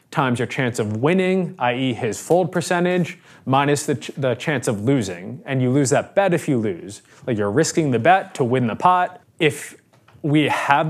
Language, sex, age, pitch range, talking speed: English, male, 20-39, 125-165 Hz, 200 wpm